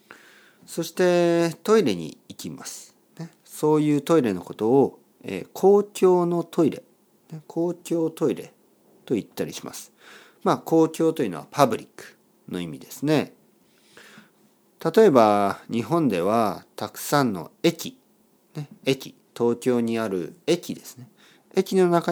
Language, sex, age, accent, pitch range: Japanese, male, 50-69, native, 120-185 Hz